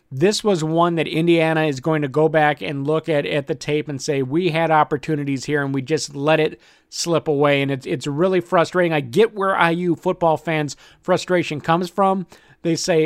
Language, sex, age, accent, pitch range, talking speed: English, male, 50-69, American, 150-180 Hz, 205 wpm